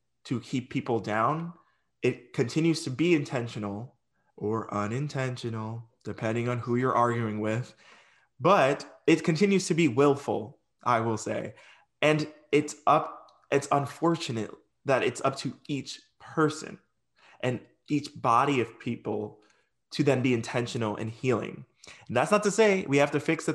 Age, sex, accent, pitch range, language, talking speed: 20-39, male, American, 120-155 Hz, English, 145 wpm